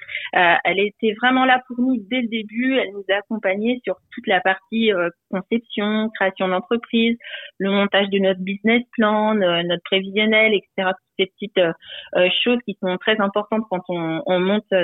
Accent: French